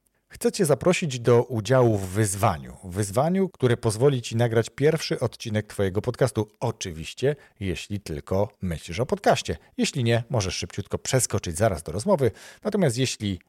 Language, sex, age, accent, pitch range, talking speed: Polish, male, 40-59, native, 95-135 Hz, 140 wpm